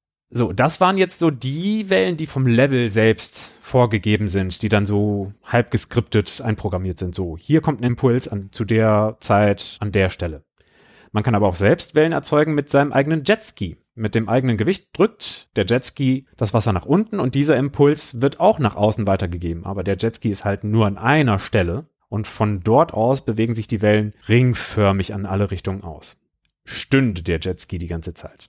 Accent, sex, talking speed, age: German, male, 185 wpm, 30-49